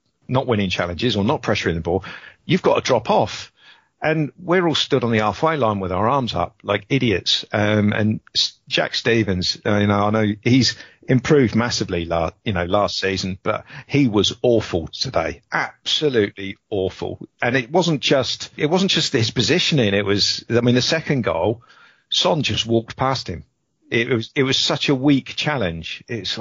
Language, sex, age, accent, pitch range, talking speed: English, male, 50-69, British, 100-135 Hz, 185 wpm